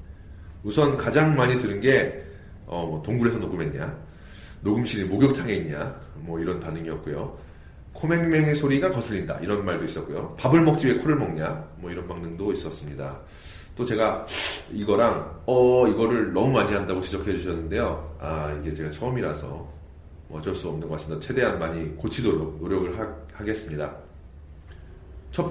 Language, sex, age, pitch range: Korean, male, 40-59, 80-120 Hz